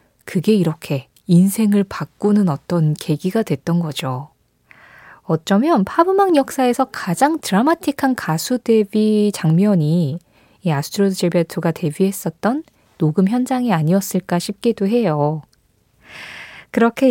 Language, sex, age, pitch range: Korean, female, 20-39, 165-215 Hz